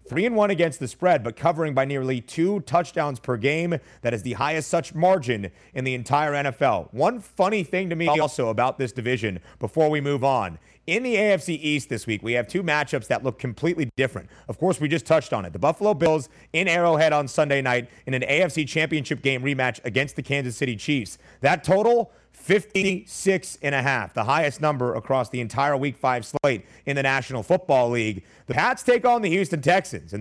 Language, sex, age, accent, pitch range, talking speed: English, male, 30-49, American, 130-180 Hz, 210 wpm